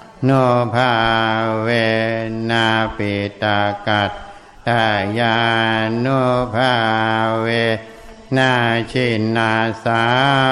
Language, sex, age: Thai, male, 60-79